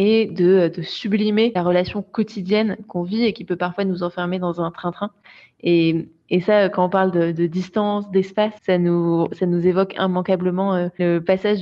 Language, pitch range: French, 175-210 Hz